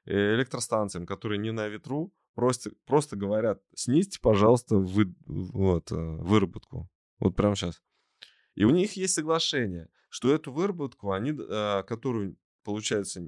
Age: 20-39